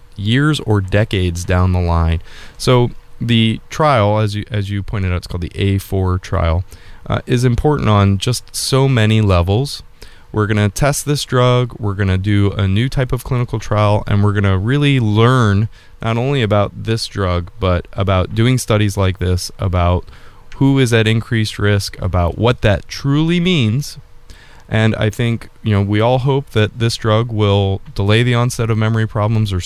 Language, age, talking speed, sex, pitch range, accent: English, 20-39, 185 wpm, male, 100-120 Hz, American